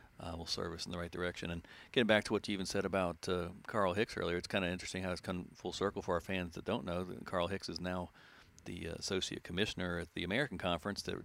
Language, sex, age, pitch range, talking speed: English, male, 50-69, 85-95 Hz, 265 wpm